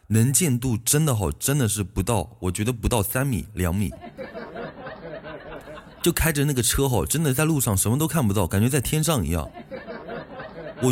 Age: 20-39